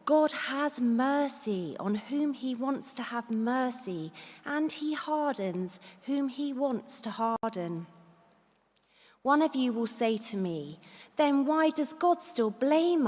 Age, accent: 40-59, British